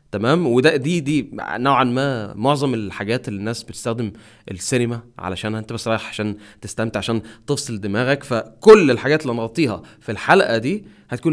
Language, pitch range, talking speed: Arabic, 105-145 Hz, 155 wpm